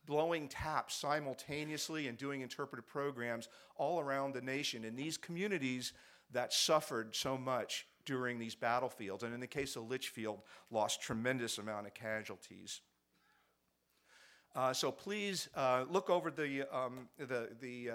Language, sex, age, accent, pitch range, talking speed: English, male, 50-69, American, 125-150 Hz, 140 wpm